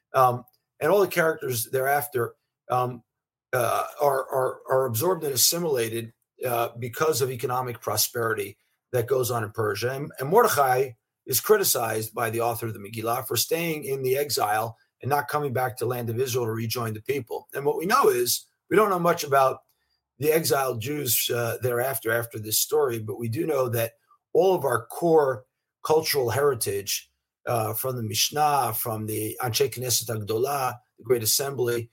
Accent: American